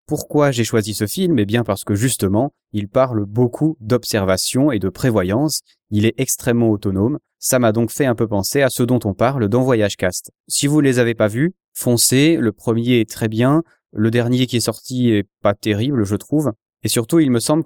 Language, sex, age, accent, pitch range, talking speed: French, male, 20-39, French, 105-125 Hz, 220 wpm